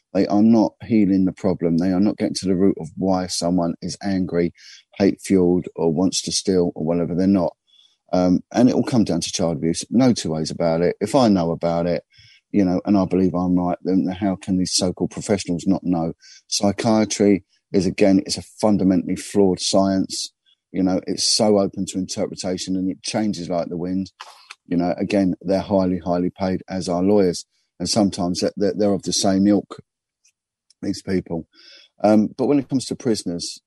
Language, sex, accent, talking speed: English, male, British, 195 wpm